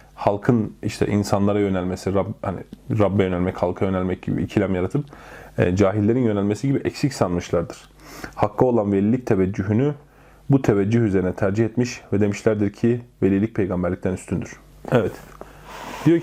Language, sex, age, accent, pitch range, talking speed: Turkish, male, 30-49, native, 100-120 Hz, 135 wpm